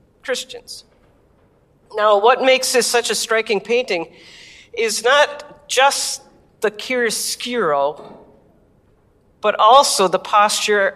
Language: English